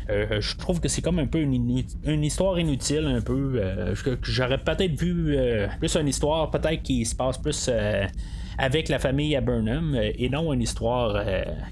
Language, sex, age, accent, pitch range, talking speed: French, male, 30-49, Canadian, 115-160 Hz, 205 wpm